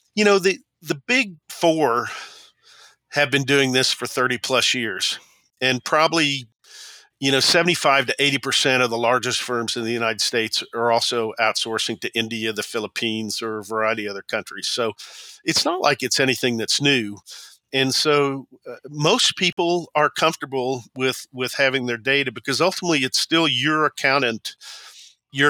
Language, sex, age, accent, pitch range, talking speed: English, male, 50-69, American, 115-140 Hz, 160 wpm